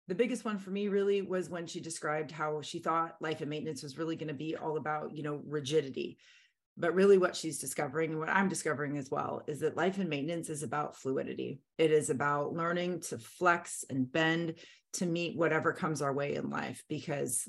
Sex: female